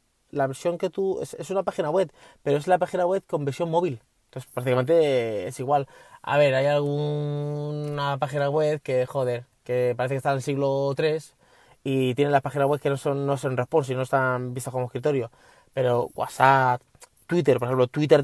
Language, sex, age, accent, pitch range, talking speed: Spanish, male, 20-39, Spanish, 130-165 Hz, 190 wpm